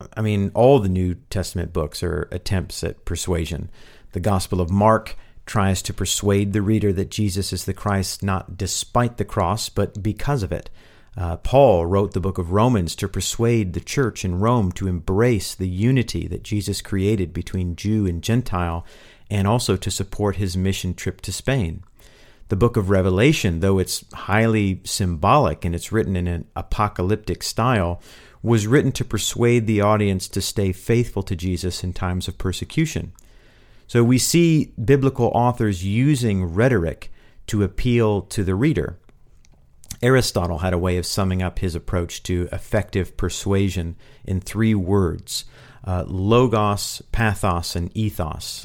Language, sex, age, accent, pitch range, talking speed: English, male, 50-69, American, 90-110 Hz, 160 wpm